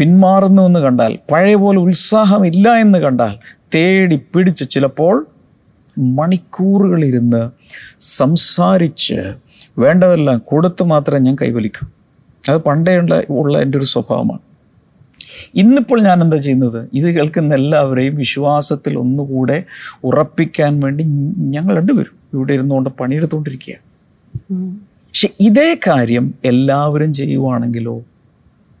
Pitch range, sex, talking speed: 130-175 Hz, male, 95 wpm